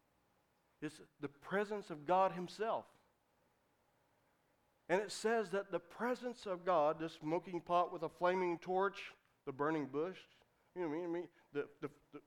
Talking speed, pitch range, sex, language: 160 wpm, 165-230 Hz, male, English